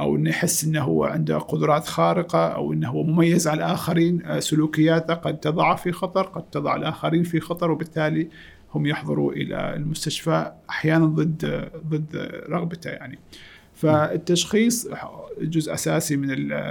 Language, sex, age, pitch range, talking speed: Arabic, male, 50-69, 145-165 Hz, 135 wpm